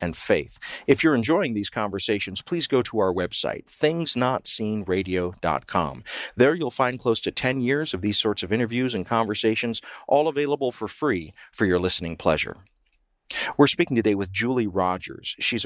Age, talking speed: 40-59, 160 wpm